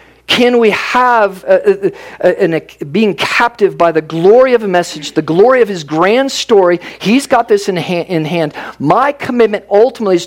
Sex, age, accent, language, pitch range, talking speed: male, 50-69, American, English, 170-230 Hz, 195 wpm